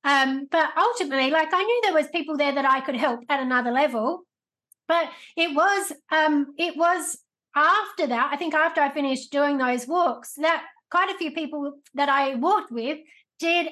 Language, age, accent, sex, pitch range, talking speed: English, 30-49, Australian, female, 270-315 Hz, 190 wpm